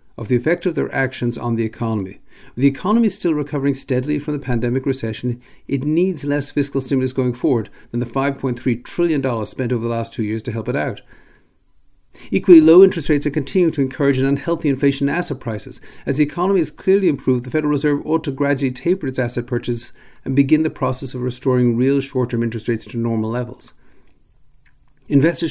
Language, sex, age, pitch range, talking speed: English, male, 50-69, 120-150 Hz, 200 wpm